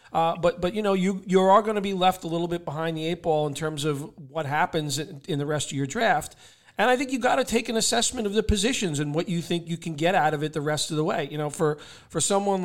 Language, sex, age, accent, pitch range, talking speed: English, male, 40-59, American, 150-180 Hz, 295 wpm